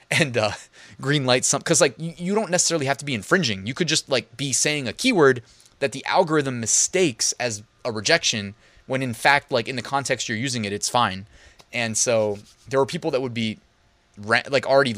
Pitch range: 115-150 Hz